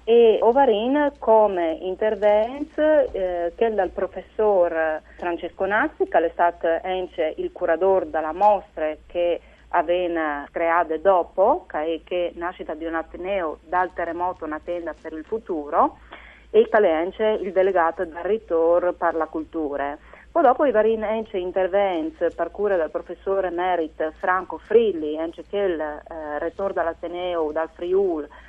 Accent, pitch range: native, 165-195 Hz